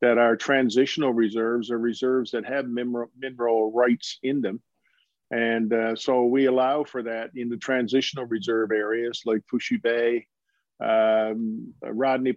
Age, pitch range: 50-69, 115-130 Hz